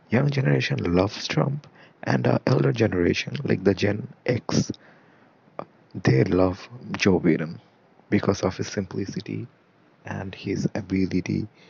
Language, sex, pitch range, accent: English, male, 90-120 Hz, Indian